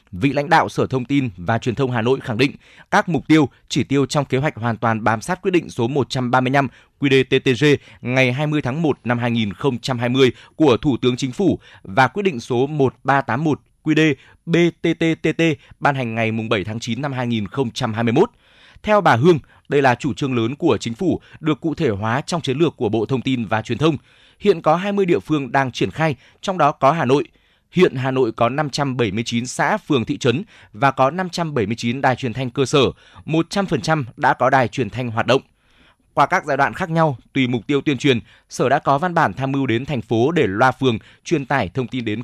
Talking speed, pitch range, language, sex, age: 215 wpm, 120-155 Hz, Vietnamese, male, 20-39